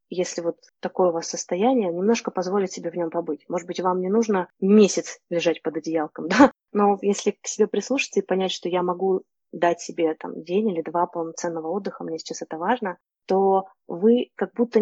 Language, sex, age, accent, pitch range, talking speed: Russian, female, 20-39, native, 175-230 Hz, 195 wpm